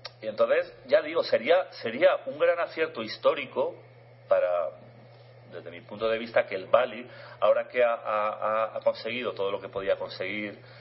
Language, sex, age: Spanish, male, 40-59